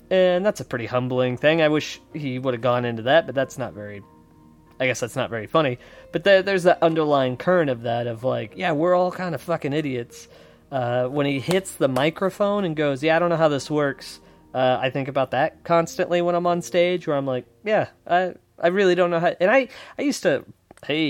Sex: male